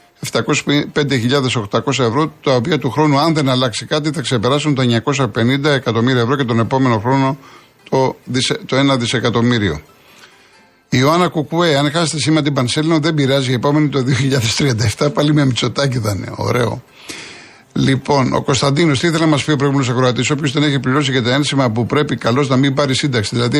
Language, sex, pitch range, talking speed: Greek, male, 120-150 Hz, 180 wpm